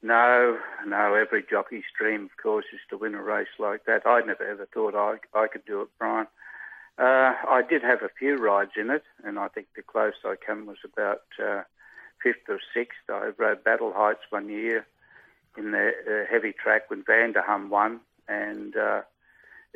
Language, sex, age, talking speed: English, male, 60-79, 190 wpm